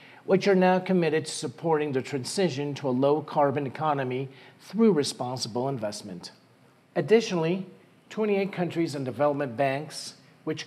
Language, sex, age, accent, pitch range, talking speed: English, male, 40-59, American, 135-170 Hz, 125 wpm